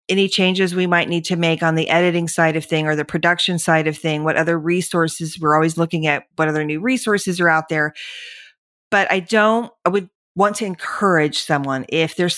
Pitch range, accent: 160-200 Hz, American